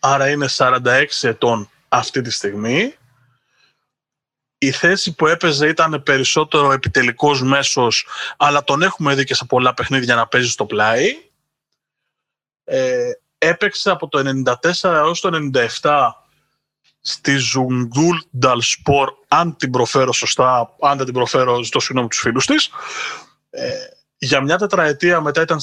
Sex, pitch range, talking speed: male, 130-185 Hz, 130 wpm